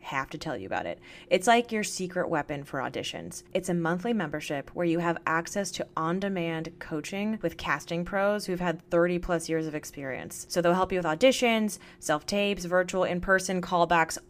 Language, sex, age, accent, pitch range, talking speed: English, female, 20-39, American, 170-215 Hz, 185 wpm